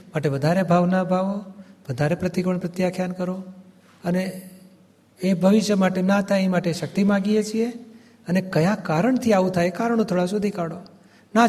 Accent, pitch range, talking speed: native, 160-195 Hz, 150 wpm